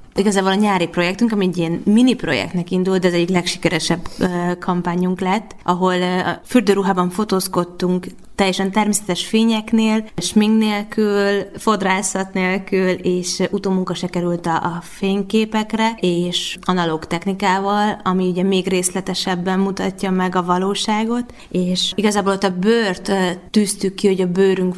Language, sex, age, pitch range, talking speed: Hungarian, female, 20-39, 180-200 Hz, 125 wpm